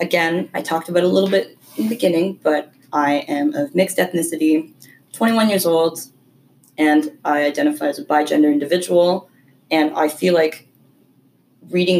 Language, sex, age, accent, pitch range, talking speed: English, female, 20-39, American, 145-180 Hz, 160 wpm